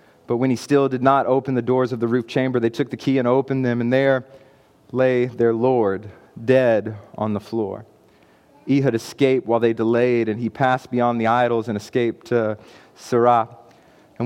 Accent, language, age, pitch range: American, English, 30-49, 115-130 Hz